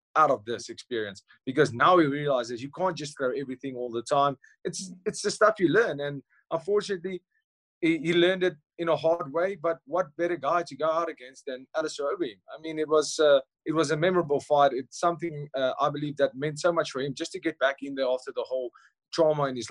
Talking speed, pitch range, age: 230 wpm, 140-180 Hz, 20-39